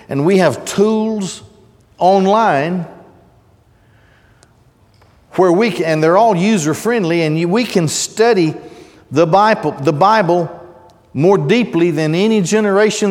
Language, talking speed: English, 115 wpm